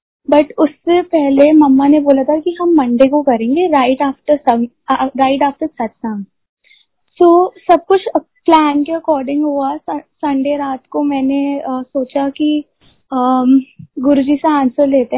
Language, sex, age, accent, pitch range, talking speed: Hindi, female, 20-39, native, 265-310 Hz, 140 wpm